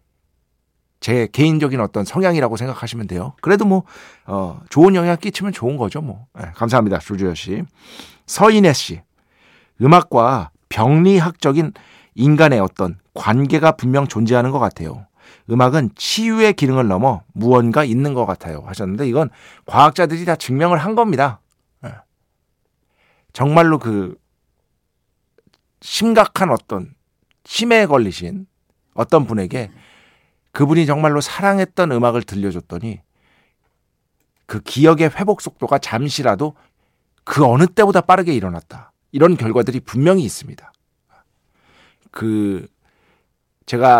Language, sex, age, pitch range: Korean, male, 50-69, 105-165 Hz